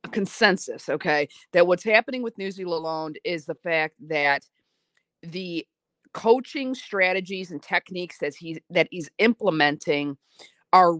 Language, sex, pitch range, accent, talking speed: English, female, 165-205 Hz, American, 135 wpm